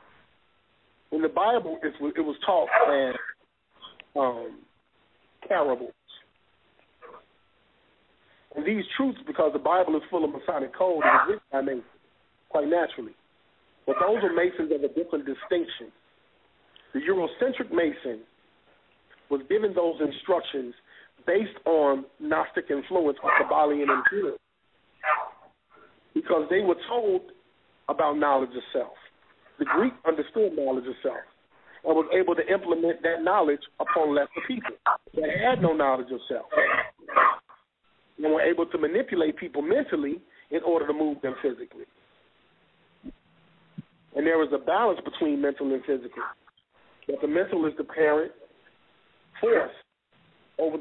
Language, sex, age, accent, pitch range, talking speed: English, male, 40-59, American, 150-215 Hz, 130 wpm